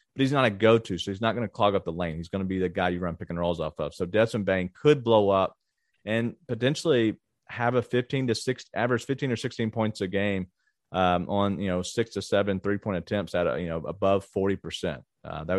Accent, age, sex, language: American, 40-59, male, English